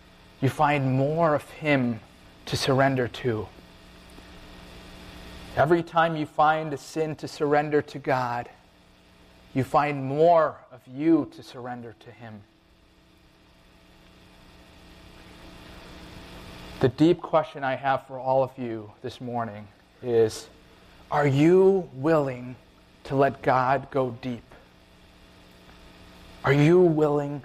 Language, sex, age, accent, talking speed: English, male, 30-49, American, 110 wpm